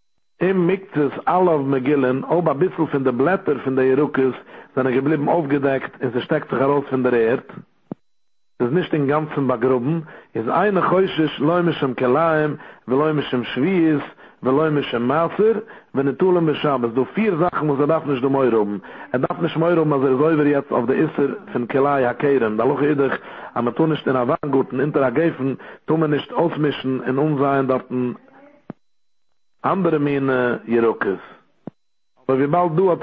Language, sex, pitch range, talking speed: English, male, 130-160 Hz, 140 wpm